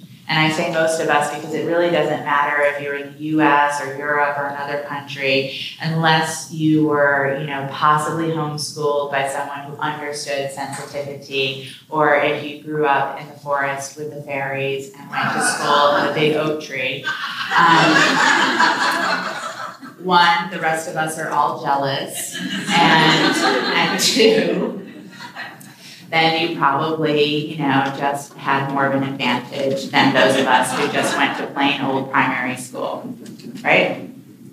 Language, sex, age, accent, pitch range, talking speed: English, female, 30-49, American, 140-155 Hz, 155 wpm